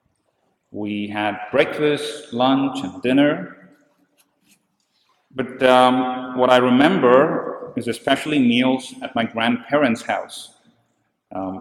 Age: 30-49